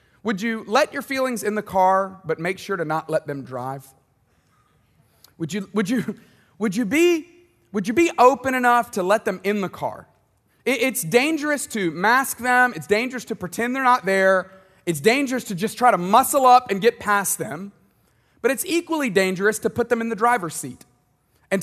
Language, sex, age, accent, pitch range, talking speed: English, male, 30-49, American, 170-245 Hz, 195 wpm